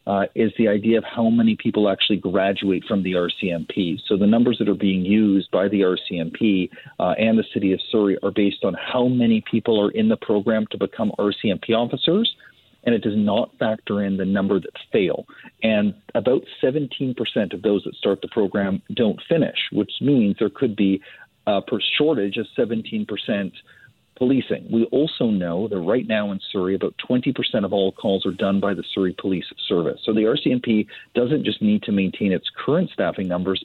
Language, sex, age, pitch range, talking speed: English, male, 40-59, 100-125 Hz, 190 wpm